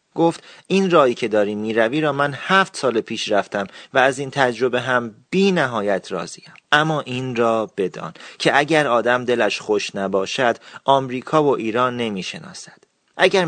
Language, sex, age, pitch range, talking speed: Persian, male, 30-49, 110-145 Hz, 155 wpm